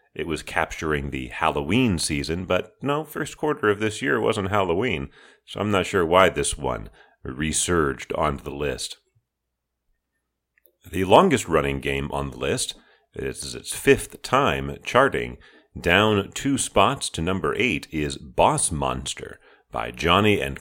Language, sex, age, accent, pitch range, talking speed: English, male, 40-59, American, 70-105 Hz, 145 wpm